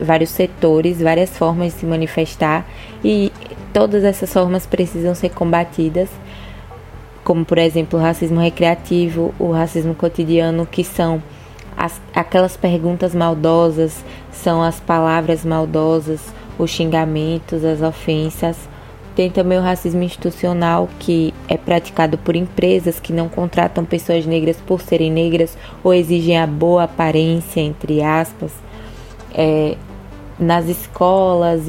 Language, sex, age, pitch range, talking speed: Portuguese, female, 20-39, 160-175 Hz, 125 wpm